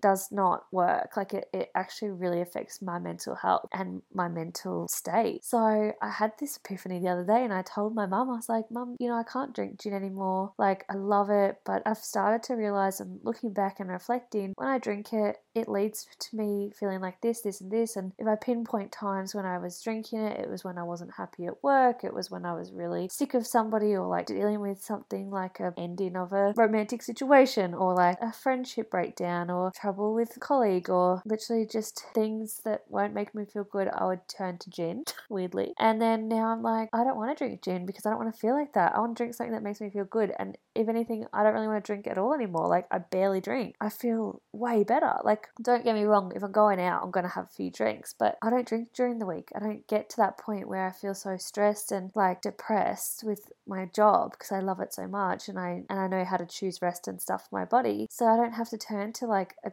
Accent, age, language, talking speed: Australian, 20-39, English, 250 wpm